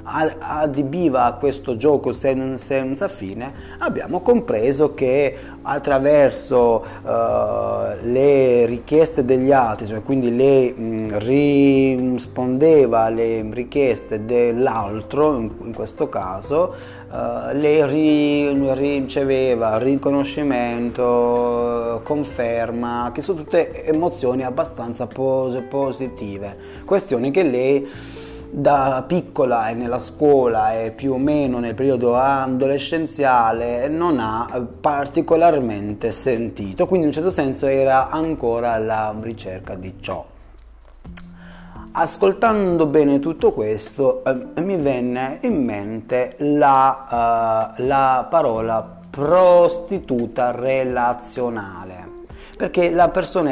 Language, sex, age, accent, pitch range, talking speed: Italian, male, 30-49, native, 115-145 Hz, 90 wpm